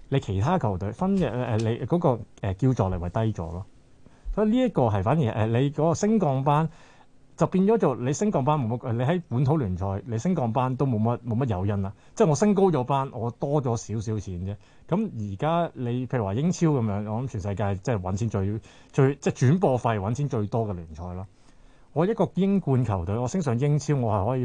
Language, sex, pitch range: Chinese, male, 105-150 Hz